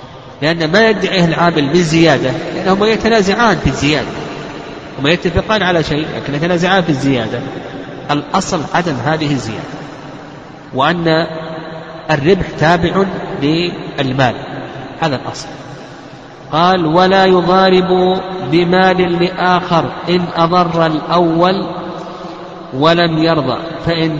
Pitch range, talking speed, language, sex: 140-175 Hz, 95 wpm, Arabic, male